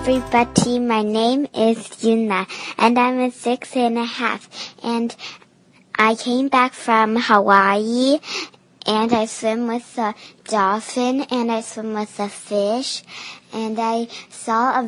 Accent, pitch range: American, 205-235 Hz